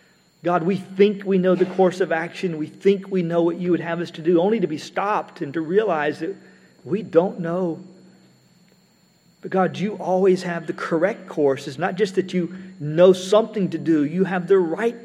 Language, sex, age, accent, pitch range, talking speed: English, male, 50-69, American, 150-180 Hz, 205 wpm